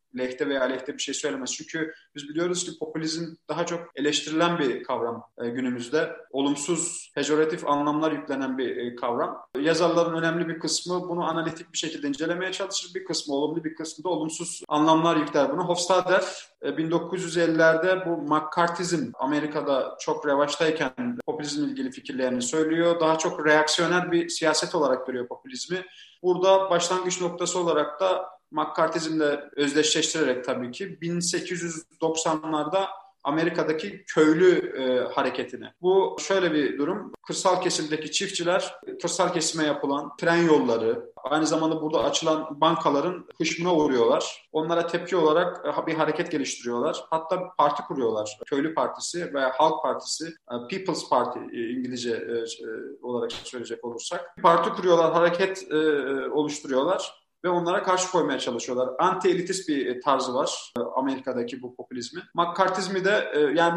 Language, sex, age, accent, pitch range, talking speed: Turkish, male, 30-49, native, 150-180 Hz, 135 wpm